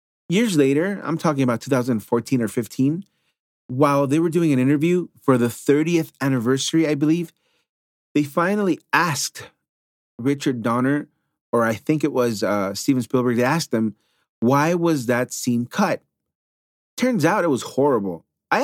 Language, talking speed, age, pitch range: English, 150 wpm, 30-49, 115-160 Hz